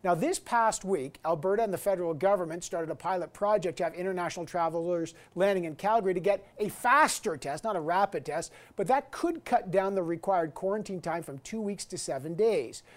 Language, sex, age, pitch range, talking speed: English, male, 50-69, 170-205 Hz, 205 wpm